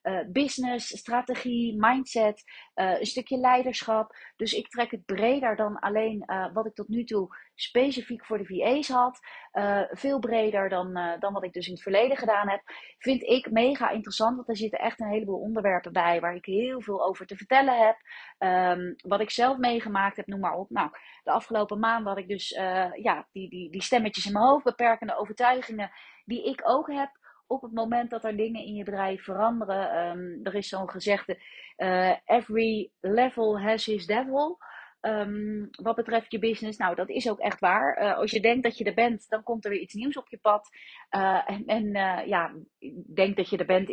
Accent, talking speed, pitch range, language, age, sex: Dutch, 200 wpm, 195-235 Hz, Dutch, 30-49, female